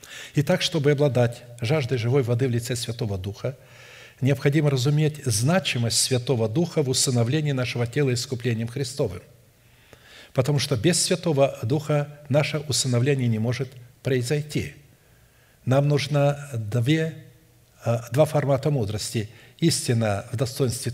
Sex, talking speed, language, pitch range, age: male, 110 wpm, Russian, 115-145 Hz, 50-69